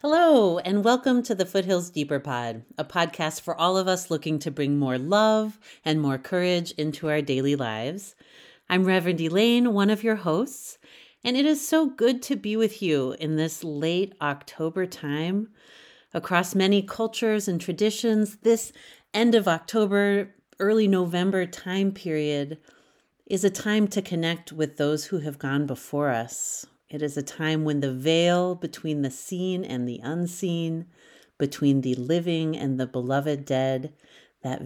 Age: 40-59